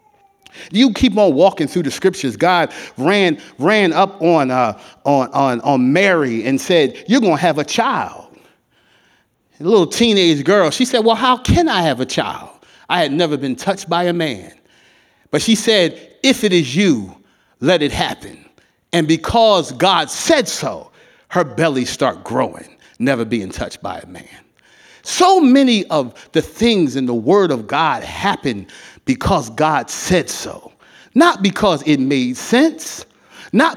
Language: English